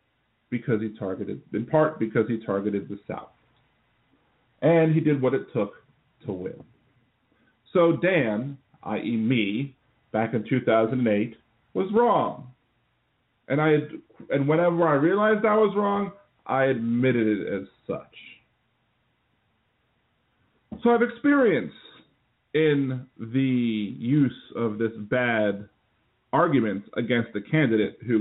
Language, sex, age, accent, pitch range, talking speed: English, male, 40-59, American, 110-140 Hz, 115 wpm